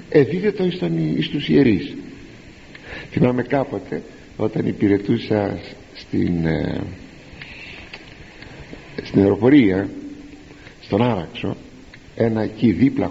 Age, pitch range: 50-69, 105-140 Hz